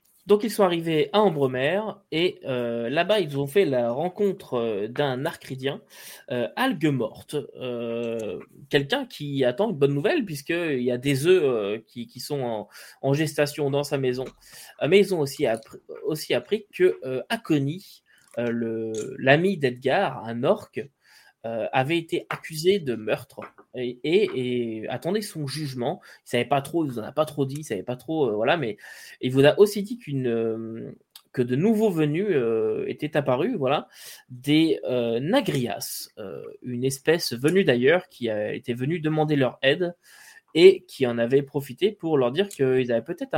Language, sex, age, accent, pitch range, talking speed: French, male, 20-39, French, 125-185 Hz, 175 wpm